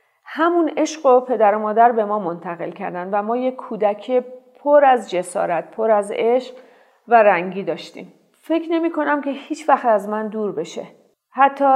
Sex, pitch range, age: female, 195-230 Hz, 40-59